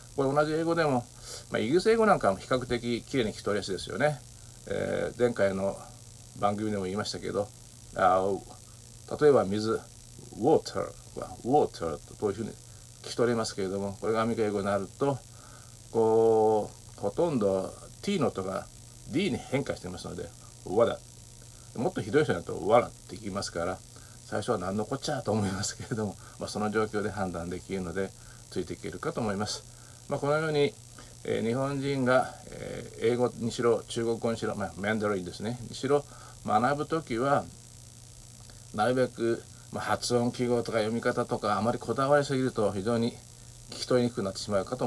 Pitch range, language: 110-125 Hz, Japanese